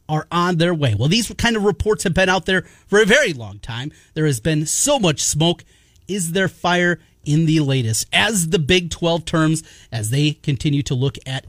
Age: 30-49